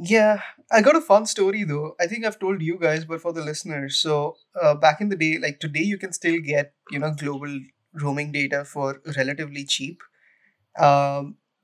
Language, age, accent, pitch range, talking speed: English, 20-39, Indian, 145-165 Hz, 195 wpm